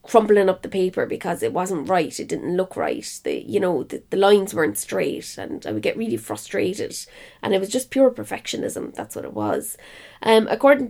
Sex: female